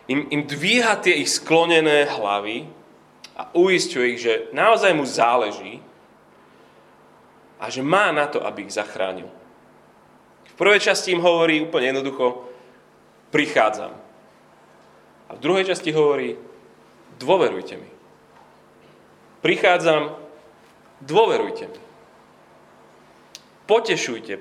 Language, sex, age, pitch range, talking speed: Slovak, male, 30-49, 130-200 Hz, 100 wpm